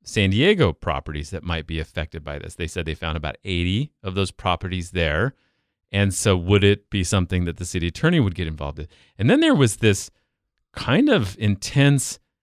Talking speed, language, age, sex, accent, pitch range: 200 wpm, English, 40-59, male, American, 95-150 Hz